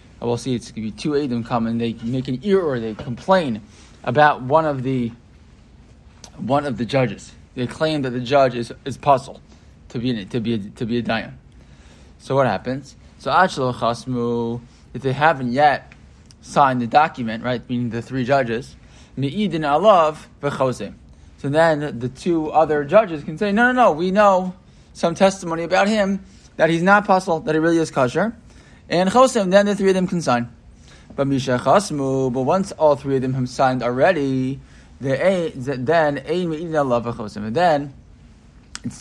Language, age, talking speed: English, 20-39, 180 wpm